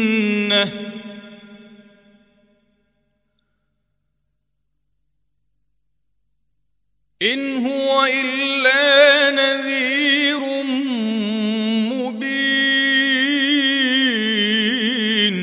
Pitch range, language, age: 205-270 Hz, Arabic, 40-59